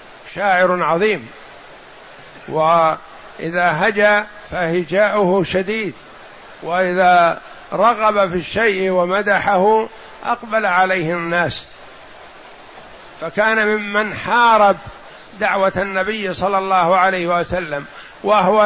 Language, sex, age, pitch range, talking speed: Arabic, male, 60-79, 180-210 Hz, 75 wpm